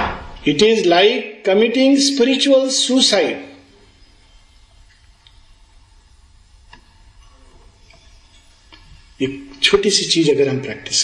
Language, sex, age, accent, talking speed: Hindi, male, 40-59, native, 70 wpm